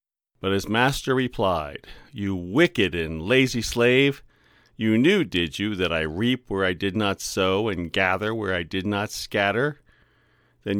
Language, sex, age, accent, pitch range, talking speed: English, male, 40-59, American, 90-120 Hz, 160 wpm